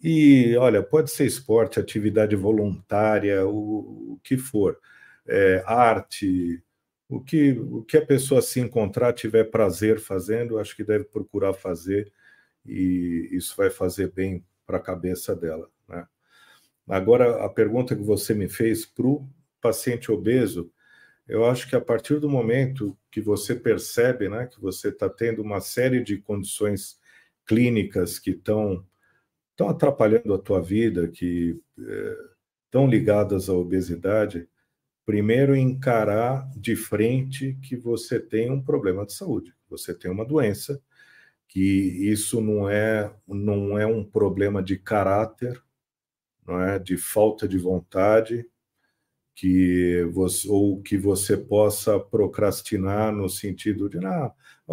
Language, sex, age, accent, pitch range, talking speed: Portuguese, male, 50-69, Brazilian, 100-120 Hz, 140 wpm